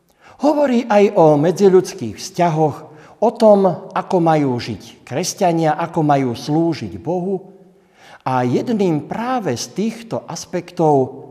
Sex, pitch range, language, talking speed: male, 130-190 Hz, Slovak, 110 wpm